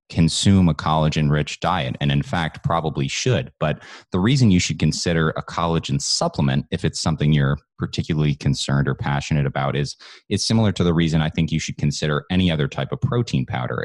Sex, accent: male, American